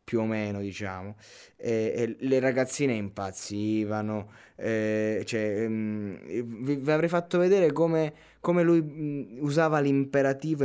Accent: native